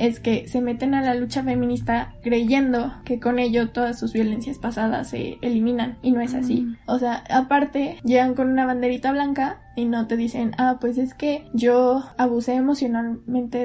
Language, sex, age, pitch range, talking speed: Spanish, female, 10-29, 235-270 Hz, 180 wpm